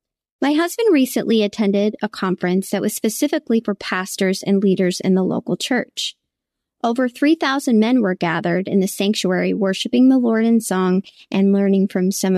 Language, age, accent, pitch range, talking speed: English, 20-39, American, 190-230 Hz, 165 wpm